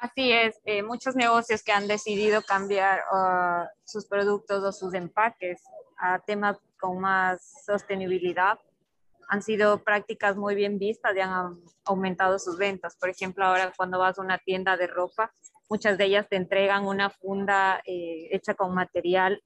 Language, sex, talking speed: Spanish, female, 160 wpm